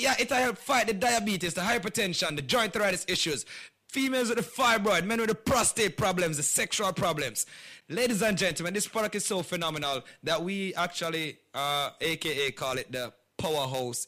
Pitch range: 155-220 Hz